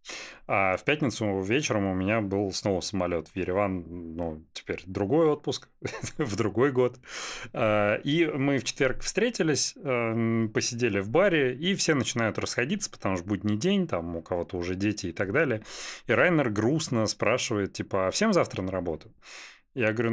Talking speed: 165 wpm